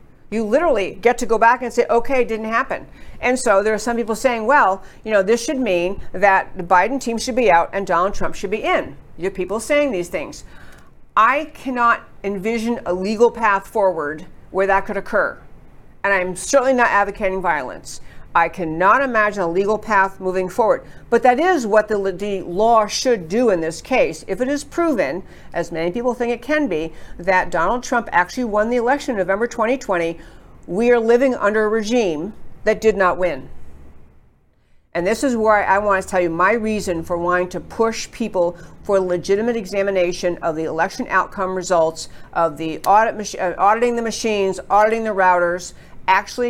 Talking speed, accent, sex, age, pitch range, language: 190 wpm, American, female, 50-69, 180-235 Hz, English